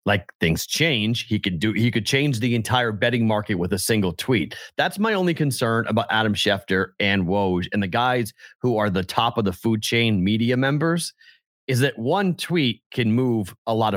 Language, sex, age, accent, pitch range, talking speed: English, male, 30-49, American, 100-130 Hz, 200 wpm